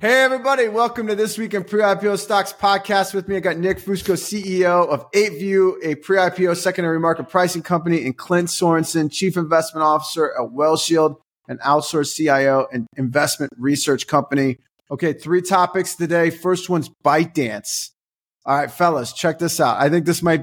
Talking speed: 165 wpm